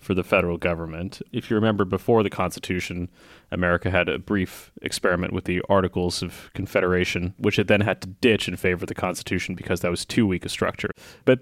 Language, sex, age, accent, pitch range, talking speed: English, male, 30-49, American, 90-100 Hz, 205 wpm